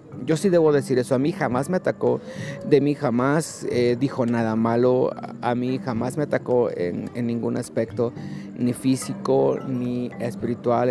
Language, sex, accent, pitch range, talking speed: Spanish, male, Mexican, 120-155 Hz, 165 wpm